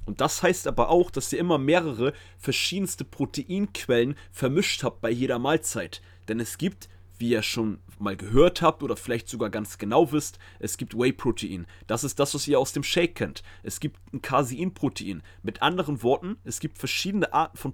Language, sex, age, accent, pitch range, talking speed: German, male, 30-49, German, 110-150 Hz, 185 wpm